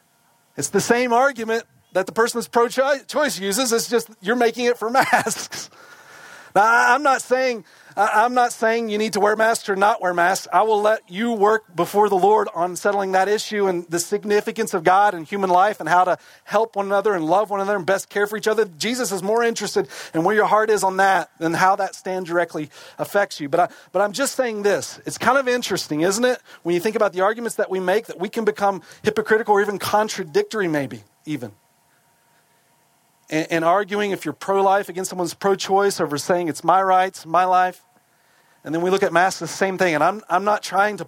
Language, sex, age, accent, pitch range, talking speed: English, male, 40-59, American, 175-220 Hz, 220 wpm